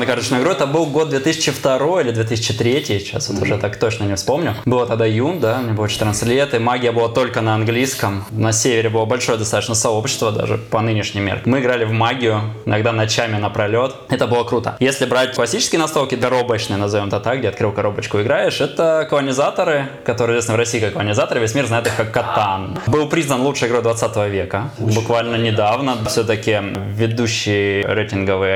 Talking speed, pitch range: 180 wpm, 105-125 Hz